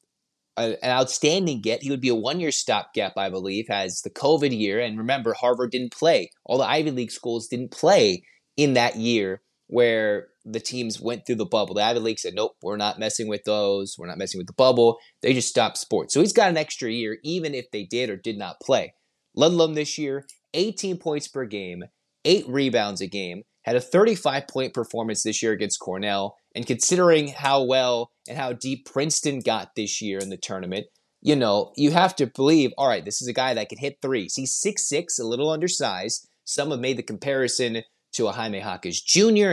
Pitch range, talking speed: 110-145 Hz, 205 wpm